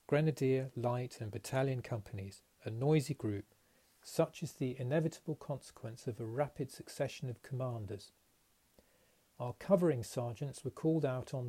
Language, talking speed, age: English, 135 wpm, 40-59